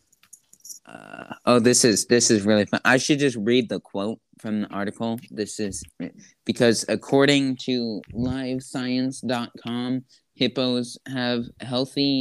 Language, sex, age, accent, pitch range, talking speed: English, male, 20-39, American, 105-130 Hz, 130 wpm